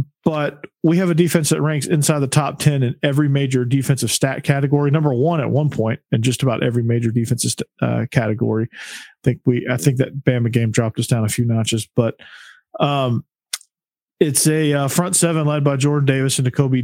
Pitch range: 125-155 Hz